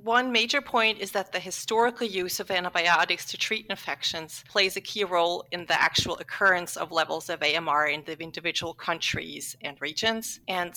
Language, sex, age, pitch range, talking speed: English, female, 40-59, 165-215 Hz, 180 wpm